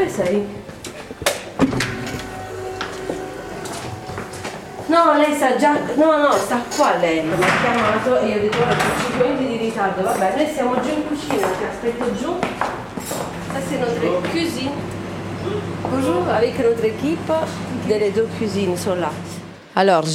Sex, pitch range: female, 160-205 Hz